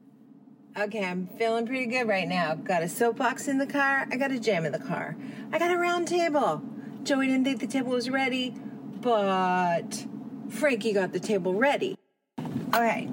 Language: English